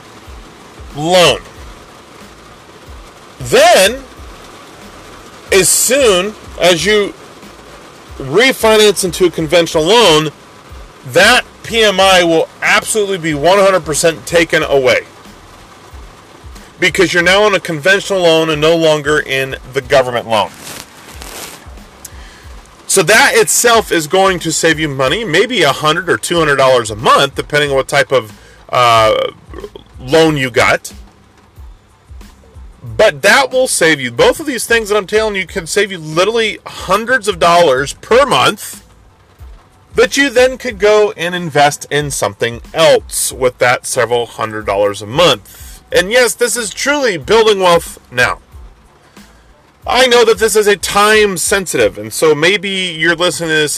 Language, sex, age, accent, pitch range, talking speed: English, male, 40-59, American, 135-210 Hz, 135 wpm